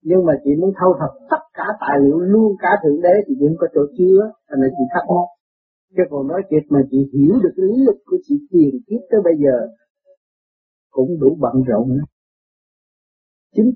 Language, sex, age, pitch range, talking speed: Vietnamese, male, 50-69, 145-215 Hz, 200 wpm